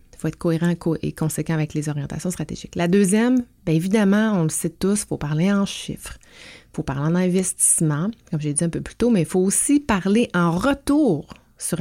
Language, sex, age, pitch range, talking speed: French, female, 30-49, 155-190 Hz, 220 wpm